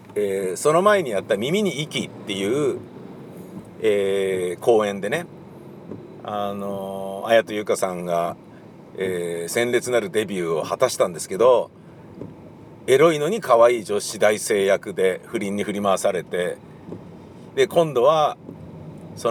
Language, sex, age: Japanese, male, 50-69